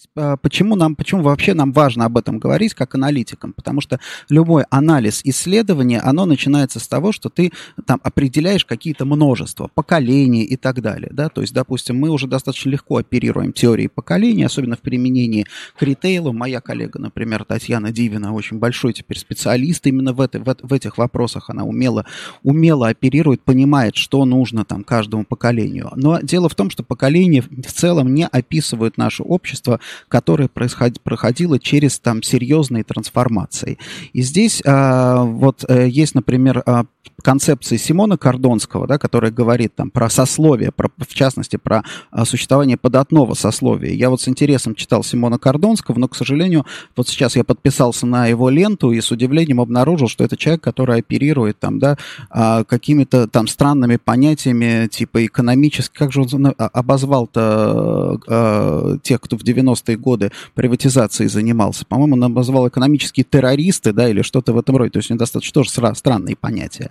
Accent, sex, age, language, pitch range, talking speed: native, male, 20-39, Russian, 120-145 Hz, 155 wpm